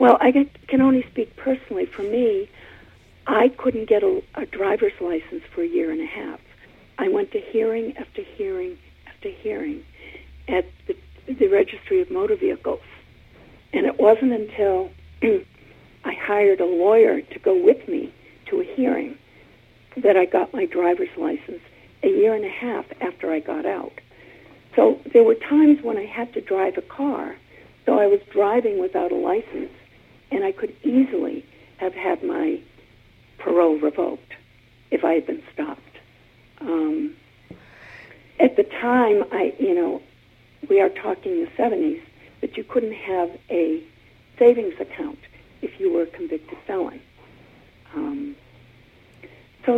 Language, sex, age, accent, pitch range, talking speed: English, female, 60-79, American, 235-380 Hz, 150 wpm